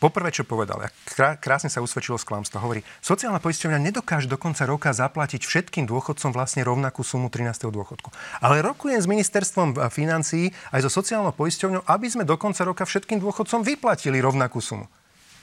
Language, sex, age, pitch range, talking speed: Slovak, male, 30-49, 120-165 Hz, 165 wpm